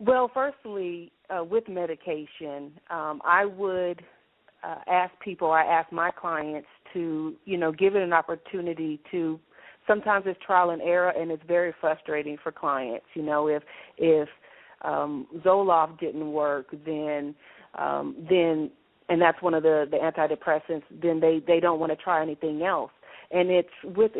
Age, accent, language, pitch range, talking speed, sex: 30-49, American, English, 155-180 Hz, 160 wpm, female